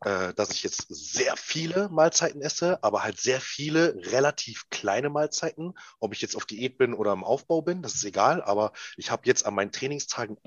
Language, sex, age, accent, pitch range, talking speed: German, male, 30-49, German, 110-155 Hz, 195 wpm